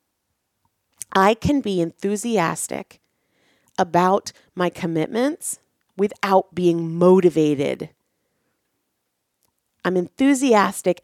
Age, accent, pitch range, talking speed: 30-49, American, 170-230 Hz, 65 wpm